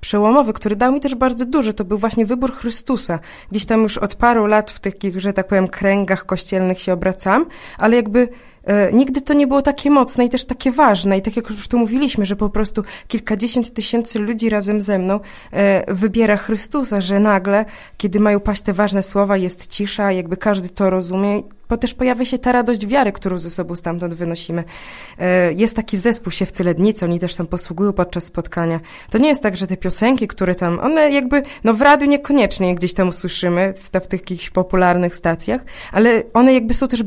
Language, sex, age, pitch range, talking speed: Polish, female, 20-39, 190-245 Hz, 200 wpm